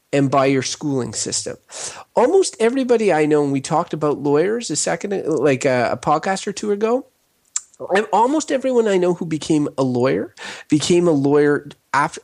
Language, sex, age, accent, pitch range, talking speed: English, male, 30-49, American, 130-180 Hz, 175 wpm